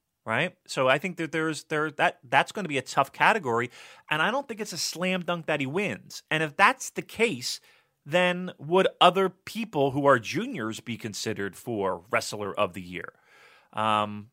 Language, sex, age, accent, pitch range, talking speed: English, male, 30-49, American, 100-150 Hz, 195 wpm